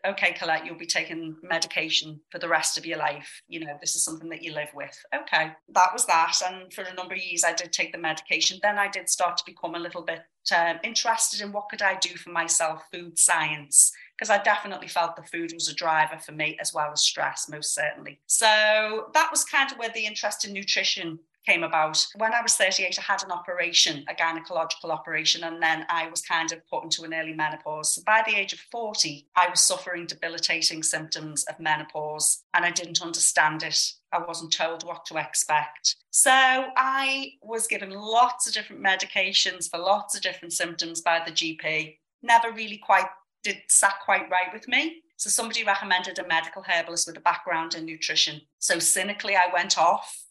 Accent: British